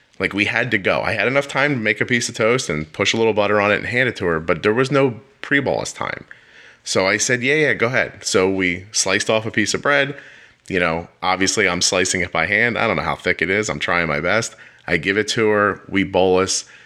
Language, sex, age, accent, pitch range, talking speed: English, male, 30-49, American, 95-120 Hz, 265 wpm